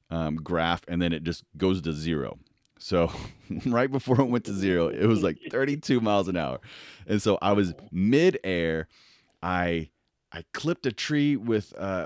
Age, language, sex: 30-49, English, male